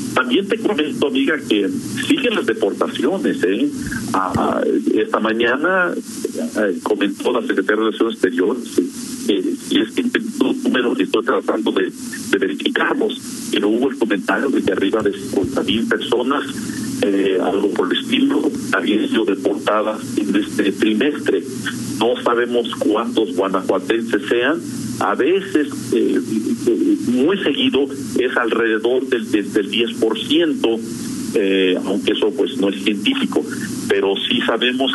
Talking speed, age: 130 wpm, 50-69